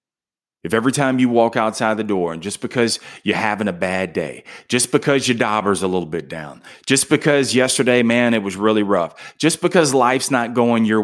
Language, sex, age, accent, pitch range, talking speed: English, male, 30-49, American, 95-135 Hz, 205 wpm